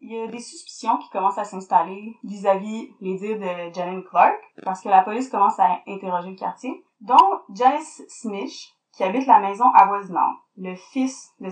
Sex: female